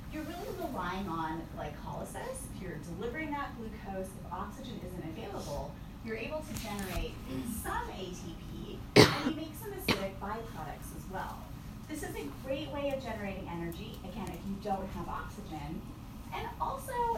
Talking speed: 155 wpm